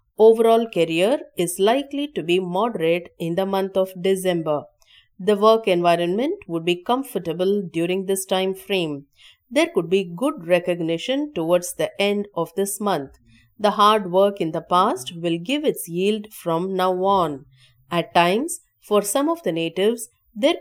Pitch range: 170-230 Hz